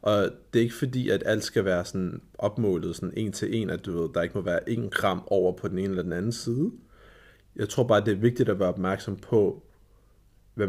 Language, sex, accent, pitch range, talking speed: Danish, male, native, 95-115 Hz, 240 wpm